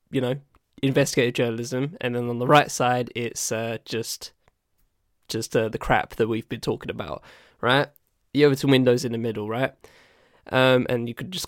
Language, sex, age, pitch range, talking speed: English, male, 10-29, 115-135 Hz, 185 wpm